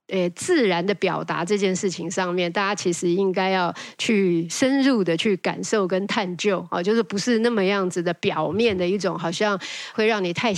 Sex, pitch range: female, 185-230 Hz